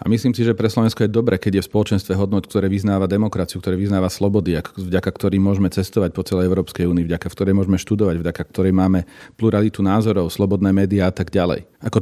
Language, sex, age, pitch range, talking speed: Slovak, male, 40-59, 95-110 Hz, 210 wpm